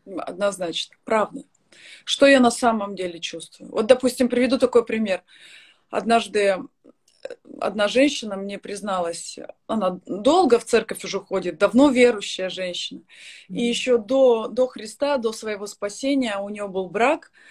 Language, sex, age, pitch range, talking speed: Russian, female, 30-49, 205-270 Hz, 135 wpm